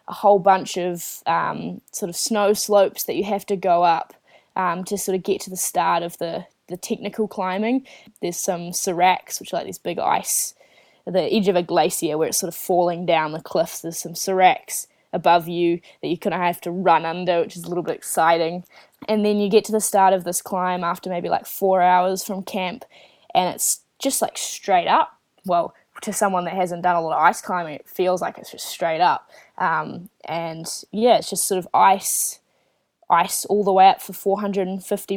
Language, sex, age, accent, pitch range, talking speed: English, female, 10-29, Australian, 175-200 Hz, 215 wpm